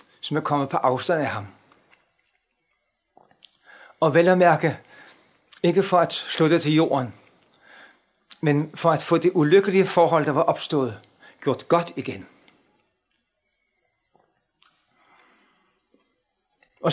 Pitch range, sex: 155-185 Hz, male